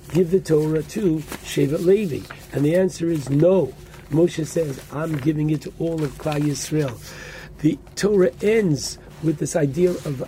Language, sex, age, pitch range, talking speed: English, male, 60-79, 130-170 Hz, 165 wpm